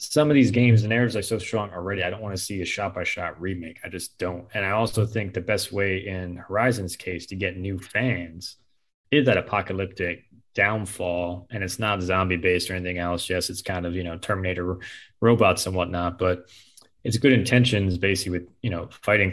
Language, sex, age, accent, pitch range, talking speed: English, male, 20-39, American, 90-110 Hz, 215 wpm